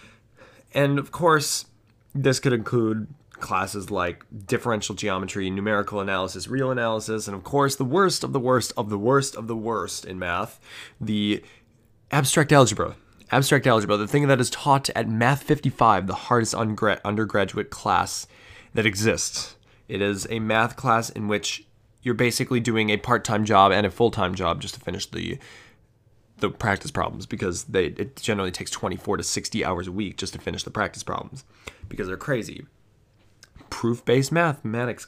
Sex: male